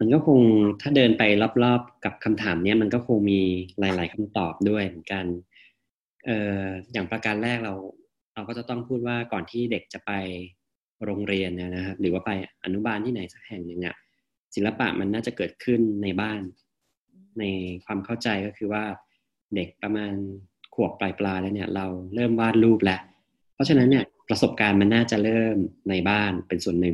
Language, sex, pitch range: Thai, male, 95-115 Hz